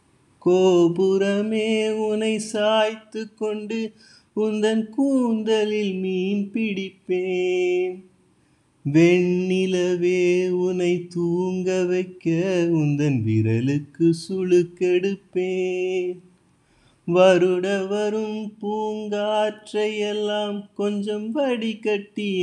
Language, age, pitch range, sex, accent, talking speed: Tamil, 30-49, 180-220 Hz, male, native, 60 wpm